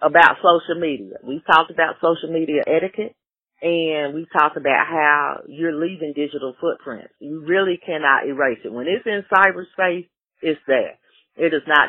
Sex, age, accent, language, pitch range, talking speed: female, 40-59, American, English, 150-185 Hz, 160 wpm